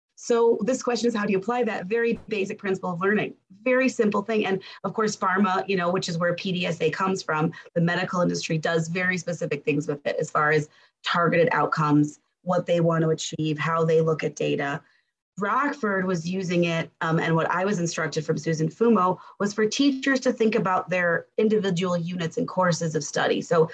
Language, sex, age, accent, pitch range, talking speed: English, female, 30-49, American, 170-230 Hz, 200 wpm